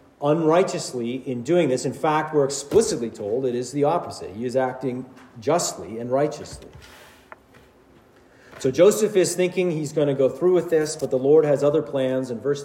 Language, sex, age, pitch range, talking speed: English, male, 40-59, 145-180 Hz, 180 wpm